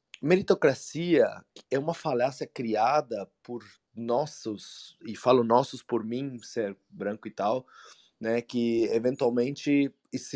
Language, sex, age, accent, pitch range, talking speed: Portuguese, male, 20-39, Brazilian, 125-180 Hz, 115 wpm